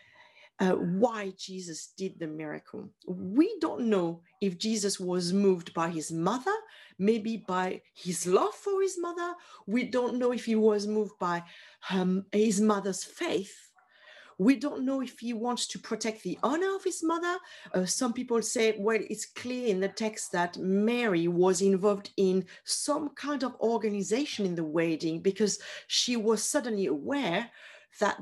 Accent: French